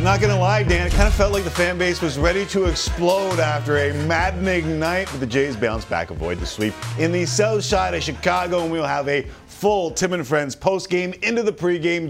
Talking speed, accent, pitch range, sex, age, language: 225 wpm, American, 105-165 Hz, male, 40-59, English